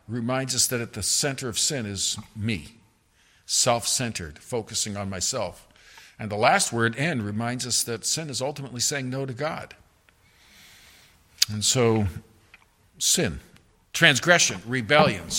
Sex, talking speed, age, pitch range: male, 135 wpm, 50-69, 110-155 Hz